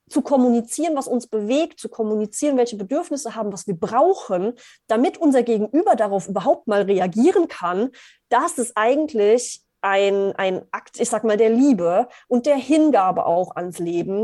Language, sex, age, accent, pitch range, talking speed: German, female, 30-49, German, 215-285 Hz, 160 wpm